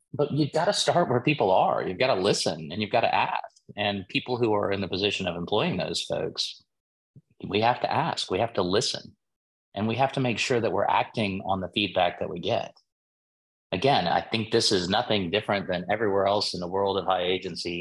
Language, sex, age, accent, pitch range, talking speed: English, male, 30-49, American, 95-110 Hz, 225 wpm